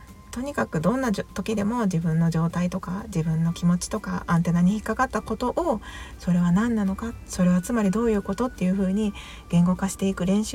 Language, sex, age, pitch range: Japanese, female, 40-59, 165-205 Hz